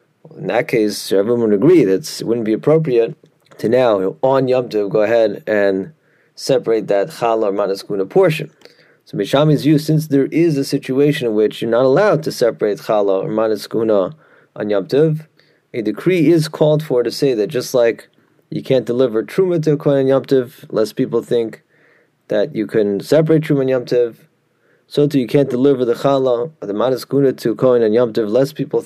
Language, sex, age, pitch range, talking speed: English, male, 30-49, 110-140 Hz, 185 wpm